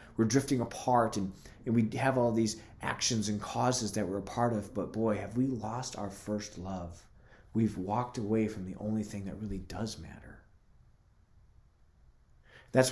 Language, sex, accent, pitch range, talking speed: English, male, American, 95-110 Hz, 170 wpm